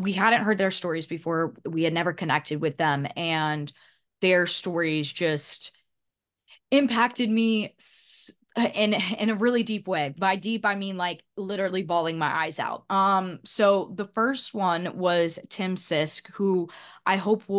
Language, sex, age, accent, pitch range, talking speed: English, female, 20-39, American, 160-200 Hz, 155 wpm